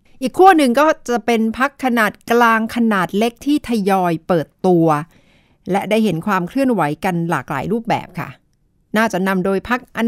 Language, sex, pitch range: Thai, female, 170-235 Hz